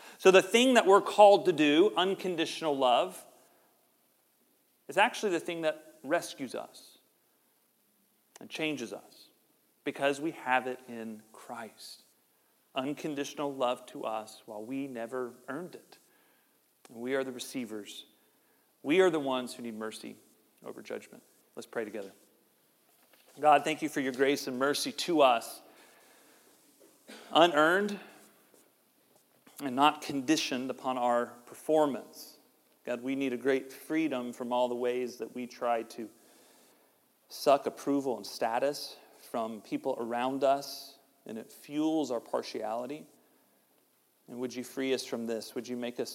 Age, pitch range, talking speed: 40-59, 120-145 Hz, 140 wpm